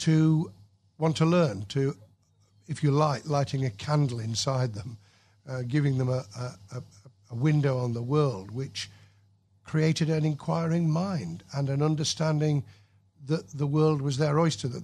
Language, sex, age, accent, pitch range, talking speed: English, male, 50-69, British, 115-145 Hz, 155 wpm